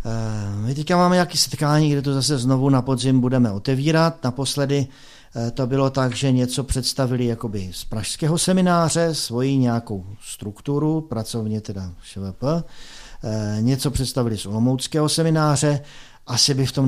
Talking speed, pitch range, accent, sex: 135 wpm, 115-140 Hz, native, male